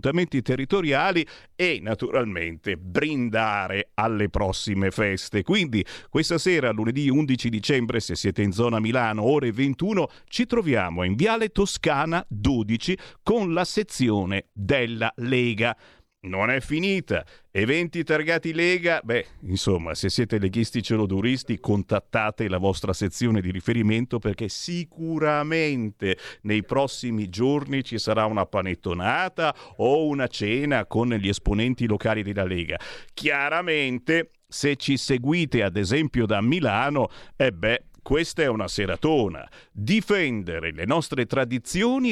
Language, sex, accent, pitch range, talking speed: Italian, male, native, 110-160 Hz, 120 wpm